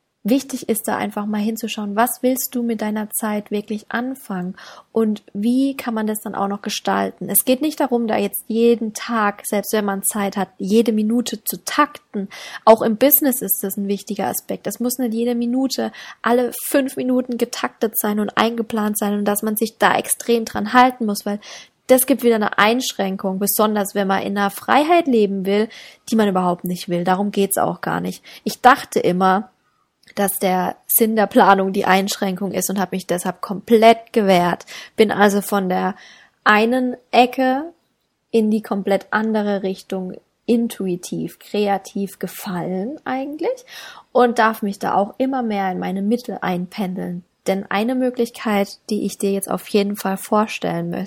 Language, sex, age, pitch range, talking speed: German, female, 20-39, 195-235 Hz, 175 wpm